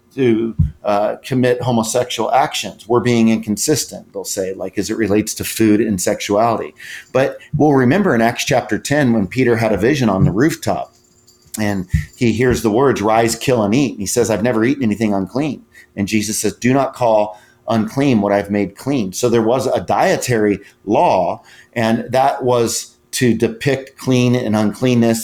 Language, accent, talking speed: English, American, 180 wpm